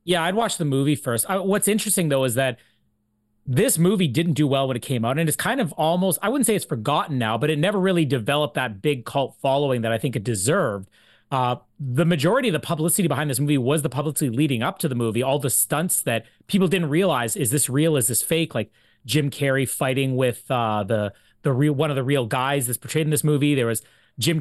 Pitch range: 130-165 Hz